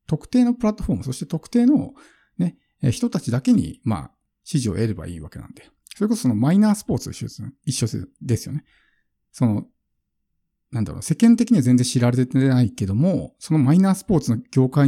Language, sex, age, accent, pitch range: Japanese, male, 50-69, native, 110-150 Hz